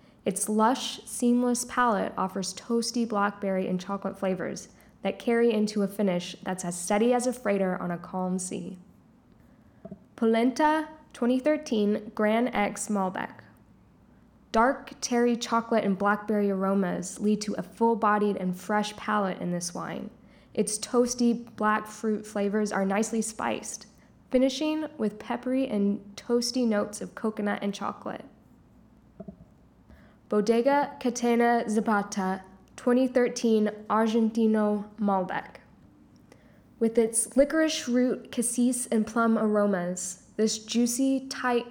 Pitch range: 200-240 Hz